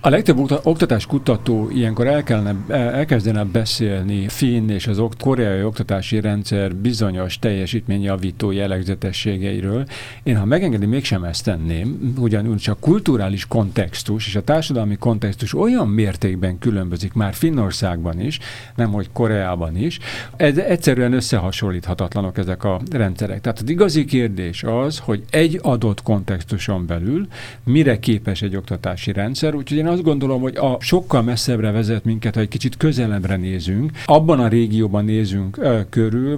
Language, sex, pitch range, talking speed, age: Hungarian, male, 100-125 Hz, 135 wpm, 50-69